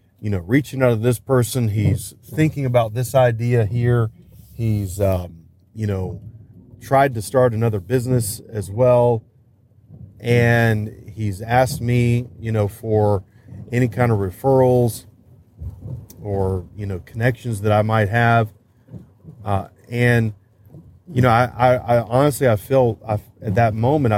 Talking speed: 140 wpm